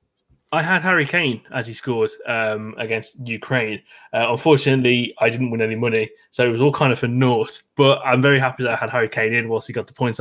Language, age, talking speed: English, 20-39, 235 wpm